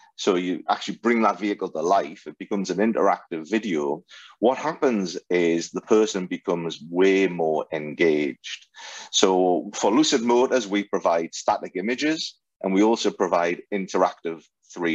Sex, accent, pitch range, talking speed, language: male, British, 85-120 Hz, 140 wpm, English